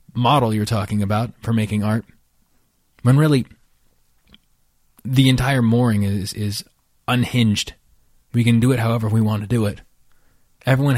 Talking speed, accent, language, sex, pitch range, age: 140 wpm, American, English, male, 105-145 Hz, 20-39